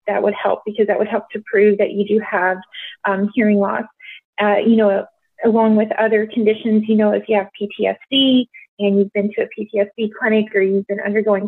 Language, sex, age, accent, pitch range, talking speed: English, female, 30-49, American, 205-245 Hz, 210 wpm